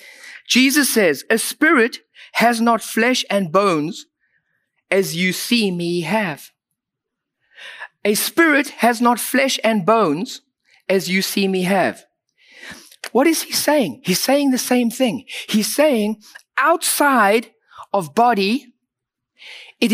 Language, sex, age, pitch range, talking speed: English, male, 50-69, 195-255 Hz, 125 wpm